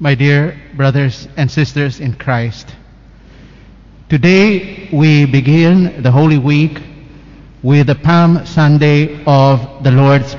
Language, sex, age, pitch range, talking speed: Indonesian, male, 50-69, 145-185 Hz, 115 wpm